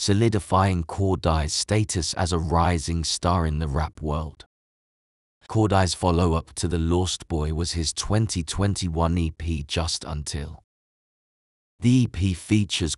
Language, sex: English, male